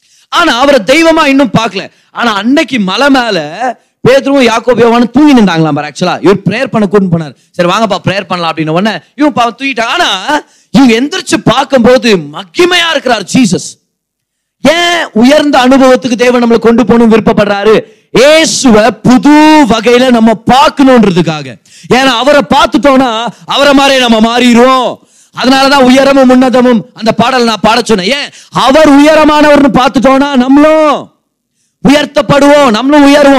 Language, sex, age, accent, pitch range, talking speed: Tamil, male, 20-39, native, 210-275 Hz, 45 wpm